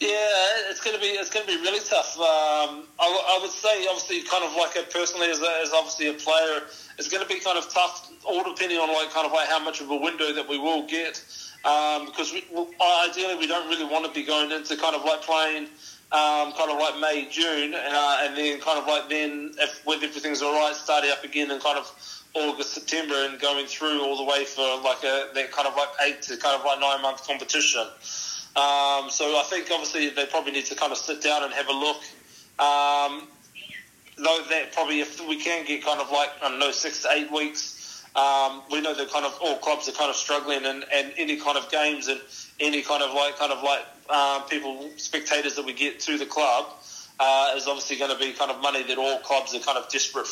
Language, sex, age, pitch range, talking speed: English, male, 20-39, 140-160 Hz, 235 wpm